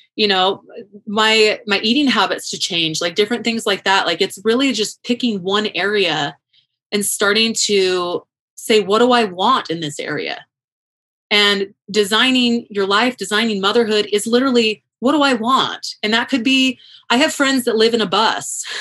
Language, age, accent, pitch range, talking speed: English, 30-49, American, 200-240 Hz, 175 wpm